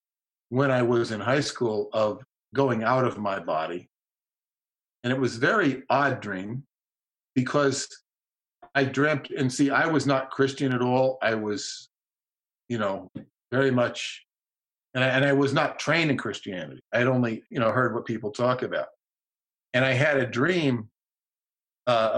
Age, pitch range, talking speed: 50-69, 115-135 Hz, 165 wpm